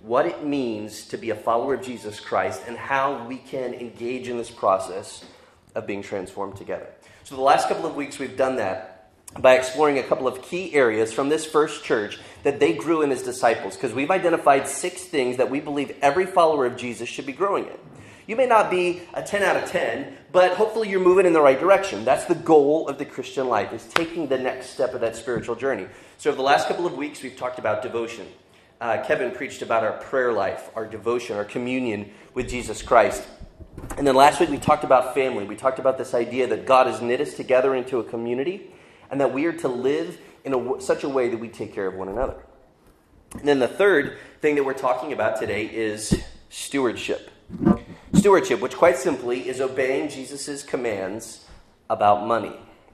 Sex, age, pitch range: male, 30-49, 120-155 Hz